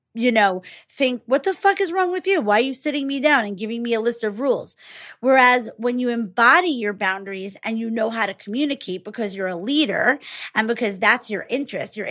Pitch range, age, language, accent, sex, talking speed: 210-255 Hz, 30-49, English, American, female, 225 wpm